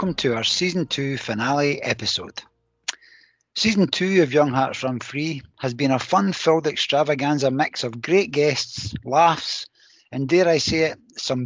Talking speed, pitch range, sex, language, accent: 155 wpm, 125-160 Hz, male, English, British